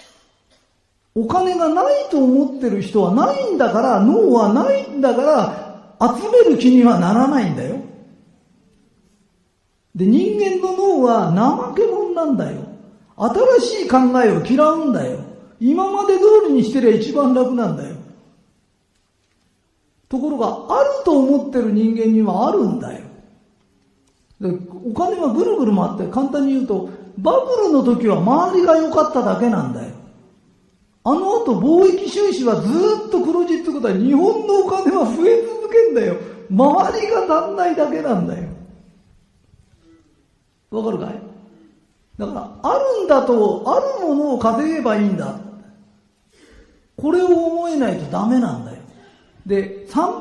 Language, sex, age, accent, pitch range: Japanese, male, 50-69, native, 210-320 Hz